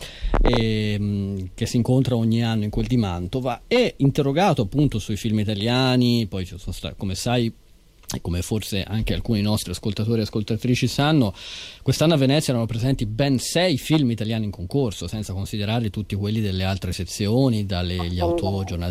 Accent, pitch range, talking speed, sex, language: native, 95-135 Hz, 145 wpm, male, Italian